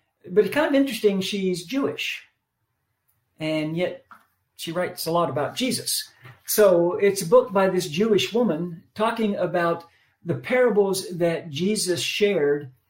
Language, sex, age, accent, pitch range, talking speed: English, male, 50-69, American, 155-220 Hz, 140 wpm